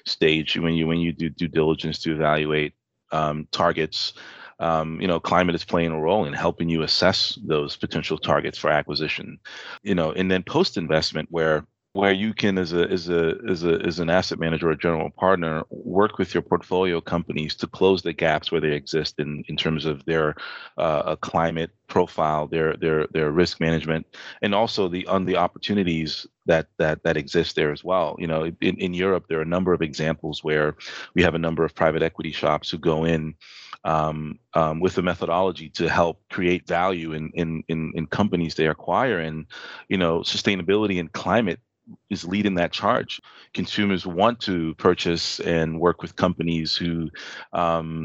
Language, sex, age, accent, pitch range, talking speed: English, male, 30-49, American, 80-90 Hz, 185 wpm